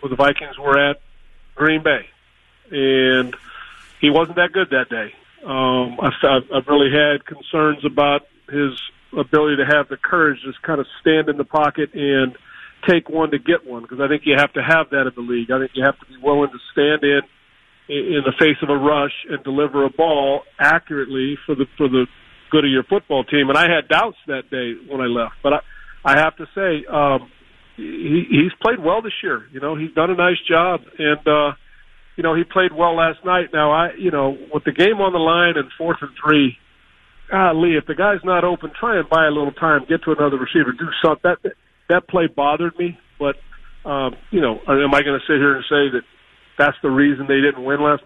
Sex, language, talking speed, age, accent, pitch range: male, English, 220 wpm, 40-59, American, 140-160 Hz